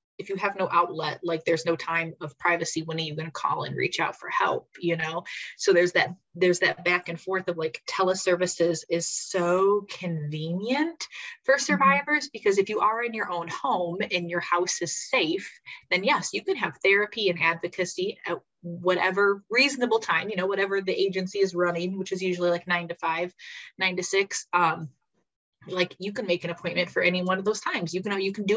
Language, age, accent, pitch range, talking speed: English, 20-39, American, 165-195 Hz, 210 wpm